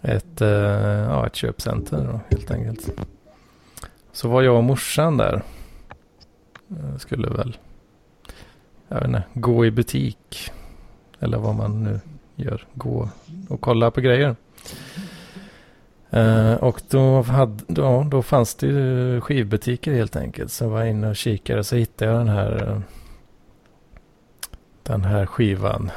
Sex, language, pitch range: male, Swedish, 105-125 Hz